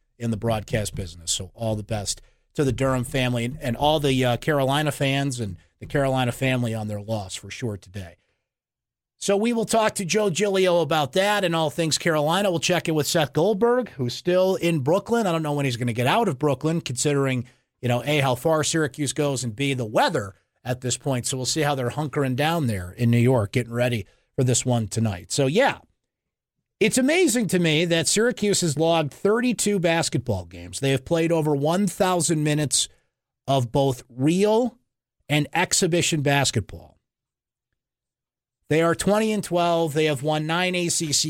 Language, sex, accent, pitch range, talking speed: English, male, American, 125-170 Hz, 190 wpm